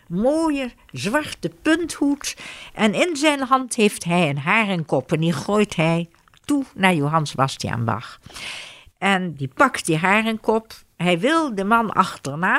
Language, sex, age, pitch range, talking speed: Dutch, female, 60-79, 160-245 Hz, 145 wpm